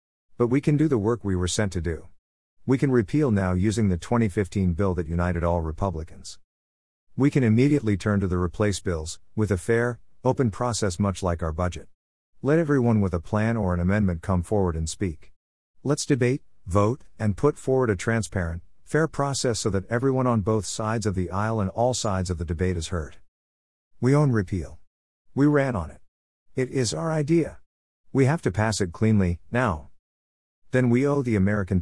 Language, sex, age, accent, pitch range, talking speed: English, male, 50-69, American, 85-115 Hz, 190 wpm